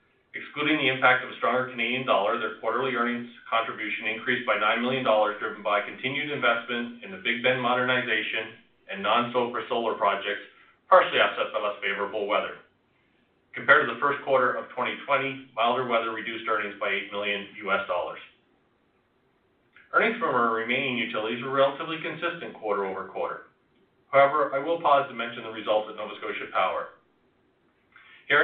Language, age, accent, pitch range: English, 30-49, American, 110-130 Hz